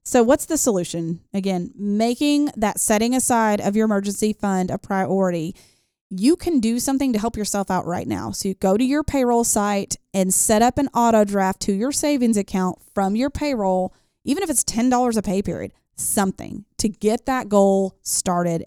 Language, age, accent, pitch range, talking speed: English, 30-49, American, 185-245 Hz, 185 wpm